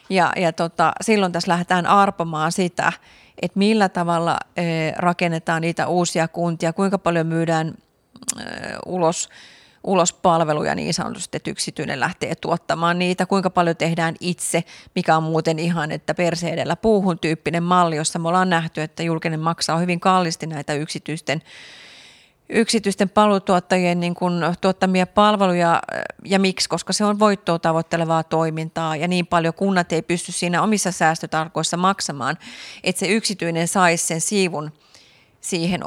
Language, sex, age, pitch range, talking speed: Finnish, female, 30-49, 165-185 Hz, 140 wpm